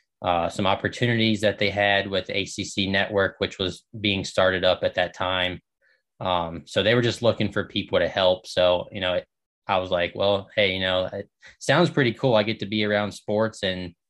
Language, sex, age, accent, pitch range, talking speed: English, male, 20-39, American, 90-105 Hz, 205 wpm